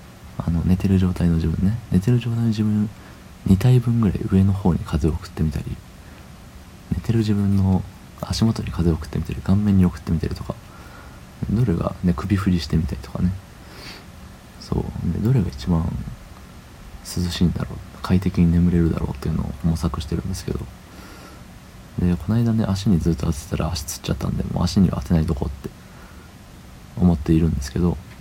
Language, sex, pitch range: Japanese, male, 85-95 Hz